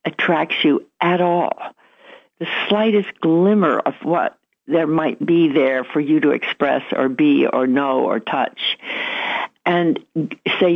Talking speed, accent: 140 wpm, American